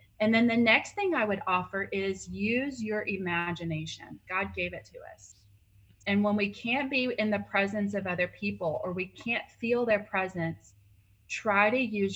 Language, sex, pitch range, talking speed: English, female, 165-210 Hz, 185 wpm